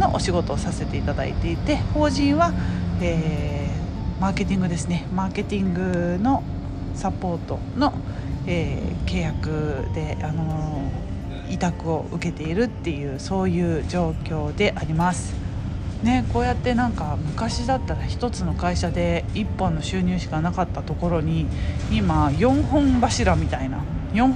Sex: female